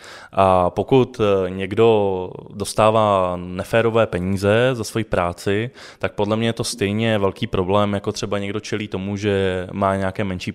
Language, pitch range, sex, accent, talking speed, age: Czech, 95-115 Hz, male, native, 150 wpm, 20-39